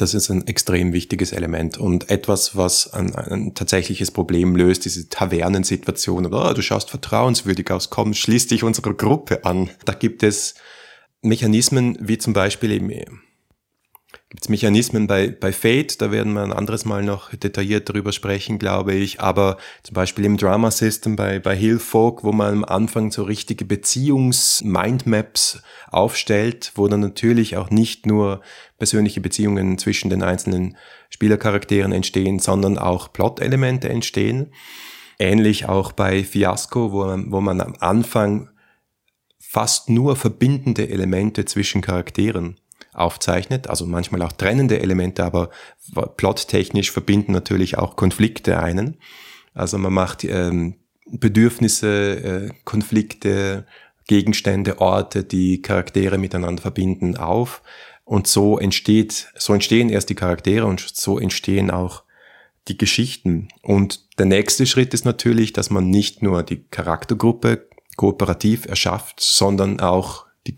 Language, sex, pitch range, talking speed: German, male, 95-110 Hz, 135 wpm